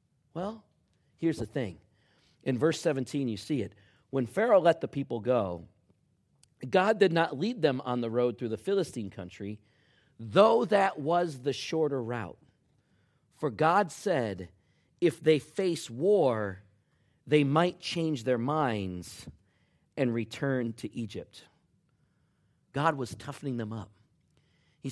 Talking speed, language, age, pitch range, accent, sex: 135 wpm, English, 40-59, 110-155 Hz, American, male